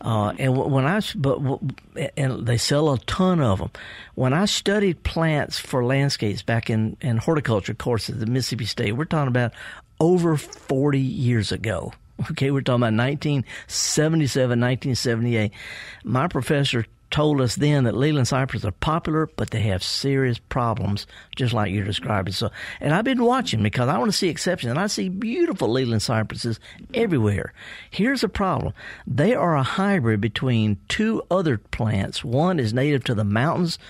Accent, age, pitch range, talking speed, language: American, 50-69, 115-155 Hz, 165 wpm, English